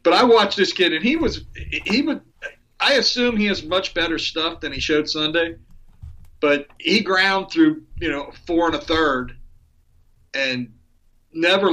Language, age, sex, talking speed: English, 40-59, male, 160 wpm